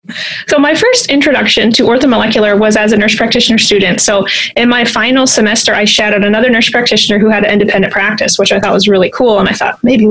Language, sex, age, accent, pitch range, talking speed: English, female, 20-39, American, 205-245 Hz, 220 wpm